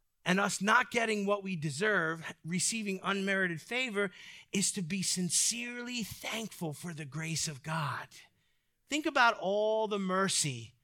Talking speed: 140 wpm